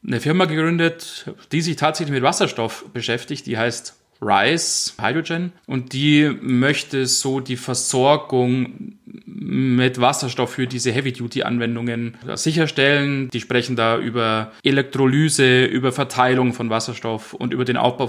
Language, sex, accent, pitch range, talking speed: German, male, German, 120-145 Hz, 125 wpm